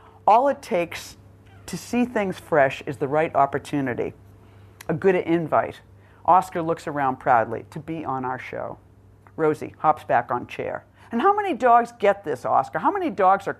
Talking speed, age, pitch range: 170 wpm, 50-69, 115-190 Hz